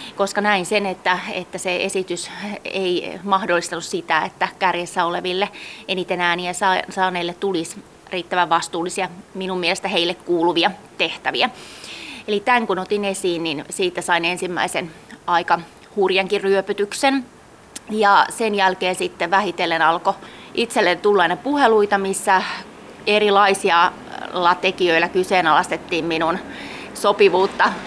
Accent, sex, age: native, female, 20-39